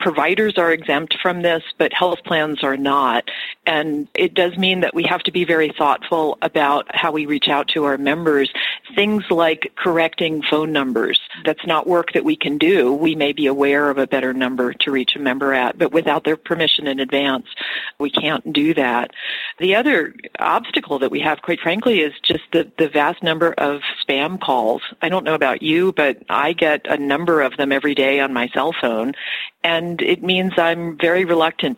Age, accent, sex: 40-59, American, female